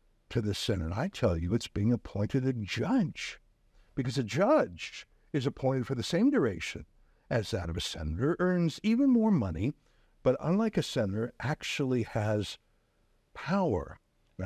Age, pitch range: 60-79, 110-165 Hz